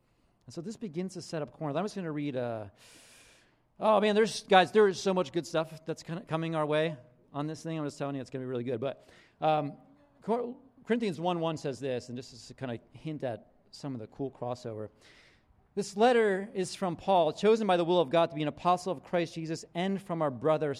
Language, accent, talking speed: English, American, 250 wpm